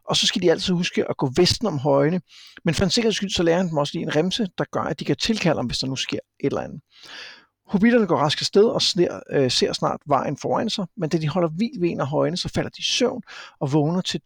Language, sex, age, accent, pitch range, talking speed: Danish, male, 60-79, native, 150-195 Hz, 280 wpm